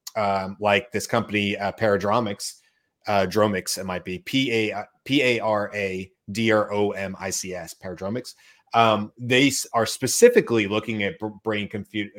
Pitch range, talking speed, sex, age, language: 100-120 Hz, 105 wpm, male, 30-49, English